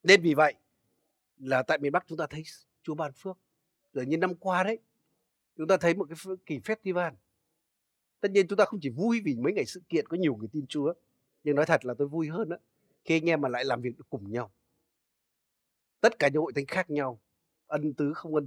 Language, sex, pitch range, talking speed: Vietnamese, male, 135-180 Hz, 225 wpm